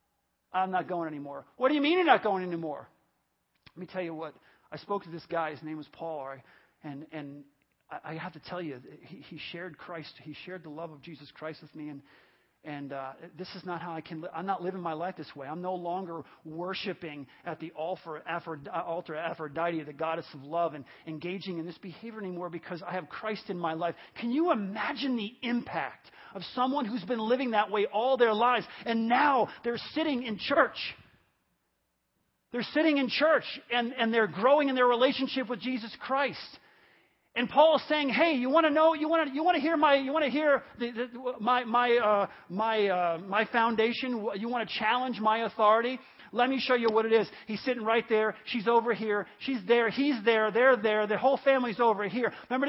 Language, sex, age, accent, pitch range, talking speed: English, male, 40-59, American, 175-255 Hz, 190 wpm